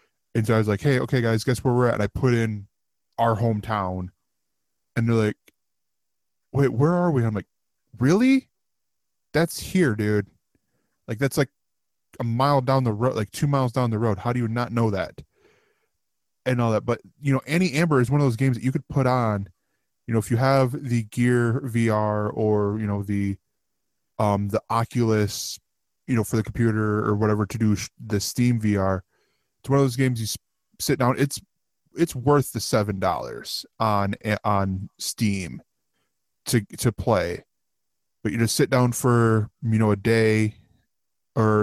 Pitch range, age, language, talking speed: 105-125 Hz, 20-39, English, 180 wpm